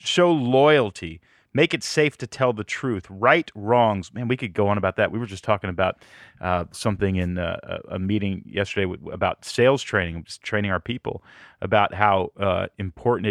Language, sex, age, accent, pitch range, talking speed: English, male, 30-49, American, 95-120 Hz, 185 wpm